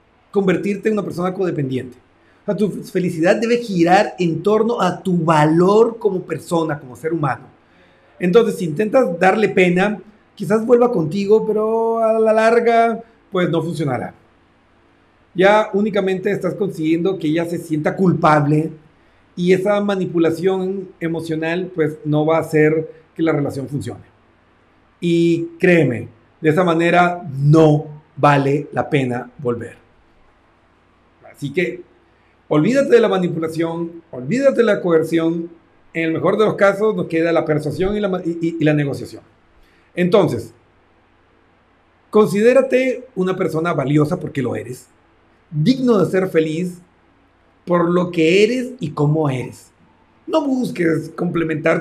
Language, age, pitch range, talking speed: Spanish, 40-59, 140-190 Hz, 135 wpm